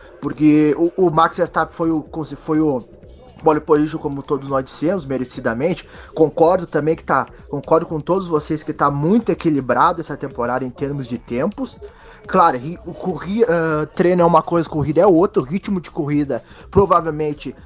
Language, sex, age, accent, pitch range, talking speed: Portuguese, male, 20-39, Brazilian, 145-180 Hz, 165 wpm